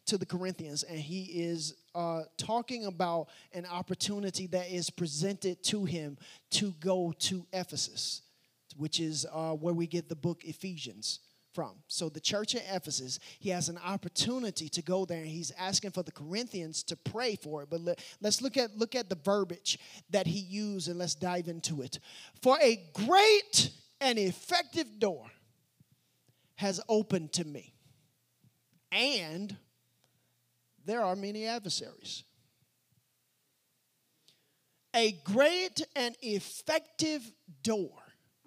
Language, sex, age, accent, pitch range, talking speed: English, male, 30-49, American, 155-220 Hz, 135 wpm